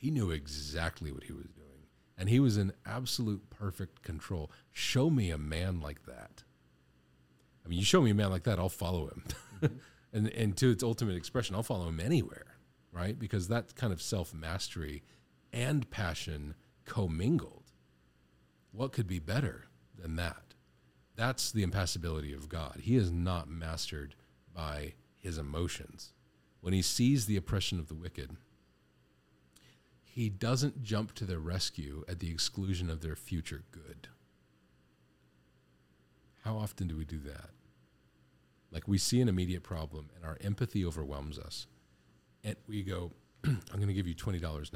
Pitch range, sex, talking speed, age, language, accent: 65-95 Hz, male, 155 wpm, 40-59, English, American